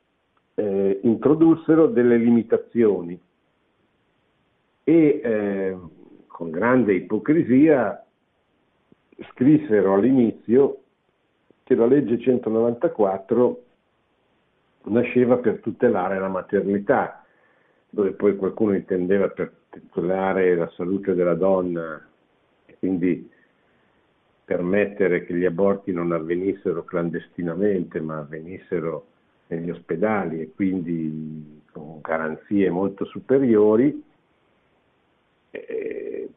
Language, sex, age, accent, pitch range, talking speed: Italian, male, 50-69, native, 90-120 Hz, 80 wpm